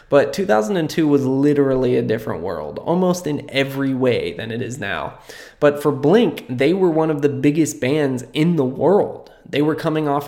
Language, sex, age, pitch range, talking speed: English, male, 20-39, 130-150 Hz, 185 wpm